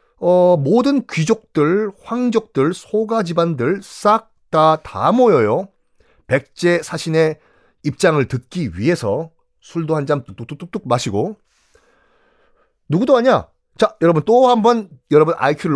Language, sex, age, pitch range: Korean, male, 40-59, 140-235 Hz